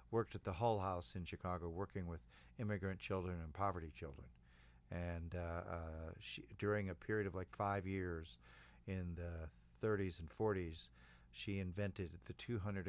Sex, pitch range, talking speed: male, 65-105 Hz, 155 wpm